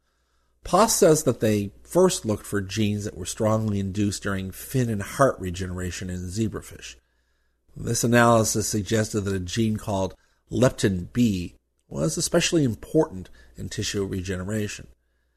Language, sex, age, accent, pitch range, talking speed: English, male, 50-69, American, 95-125 Hz, 135 wpm